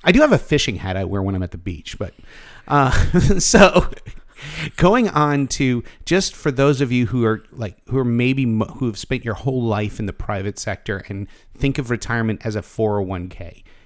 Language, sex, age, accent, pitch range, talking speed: English, male, 50-69, American, 100-120 Hz, 210 wpm